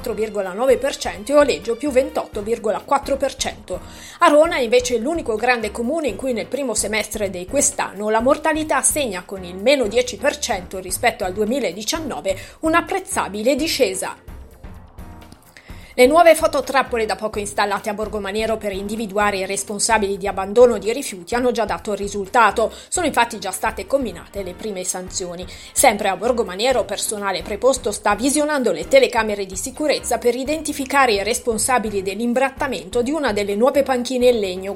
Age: 30-49